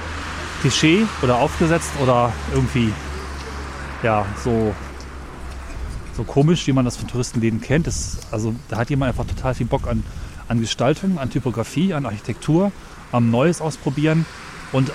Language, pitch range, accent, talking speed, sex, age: German, 105-130 Hz, German, 140 wpm, male, 30-49